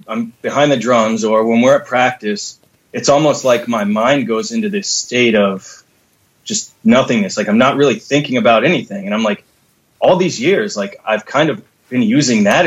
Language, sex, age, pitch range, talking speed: English, male, 20-39, 110-145 Hz, 195 wpm